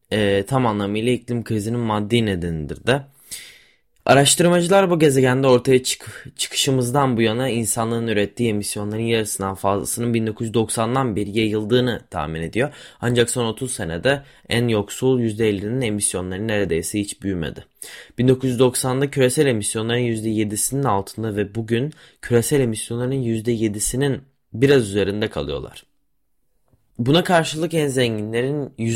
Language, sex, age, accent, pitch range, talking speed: Turkish, male, 20-39, native, 105-135 Hz, 110 wpm